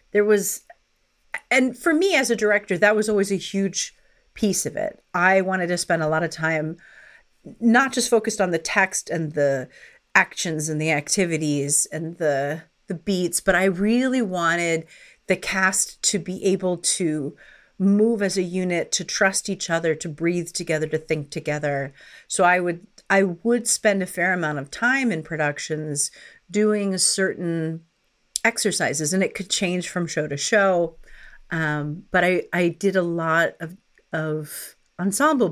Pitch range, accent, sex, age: 165-205 Hz, American, female, 40-59